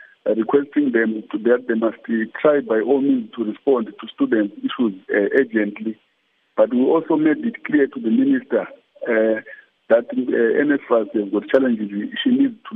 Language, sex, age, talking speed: English, male, 50-69, 170 wpm